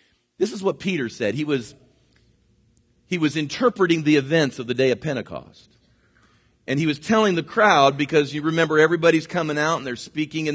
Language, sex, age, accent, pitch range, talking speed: English, male, 40-59, American, 135-185 Hz, 190 wpm